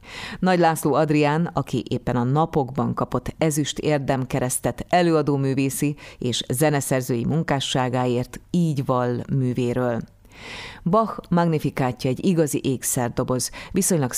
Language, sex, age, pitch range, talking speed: Hungarian, female, 30-49, 125-150 Hz, 100 wpm